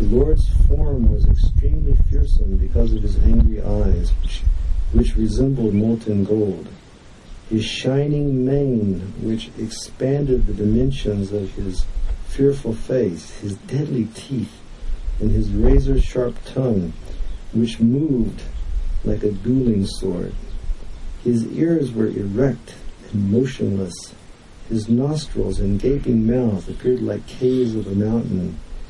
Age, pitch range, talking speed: 50-69, 95-125 Hz, 120 wpm